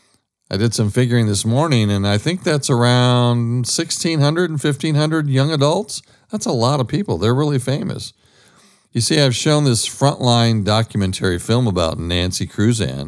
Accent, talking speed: American, 160 wpm